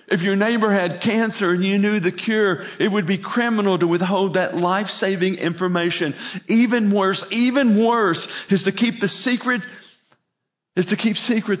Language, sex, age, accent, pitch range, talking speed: English, male, 40-59, American, 165-200 Hz, 165 wpm